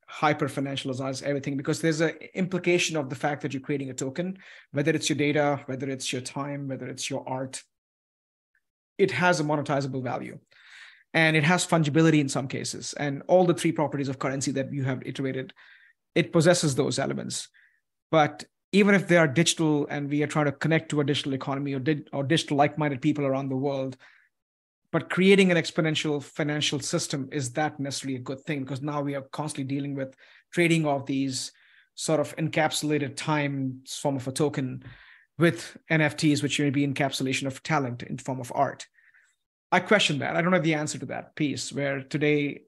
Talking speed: 185 wpm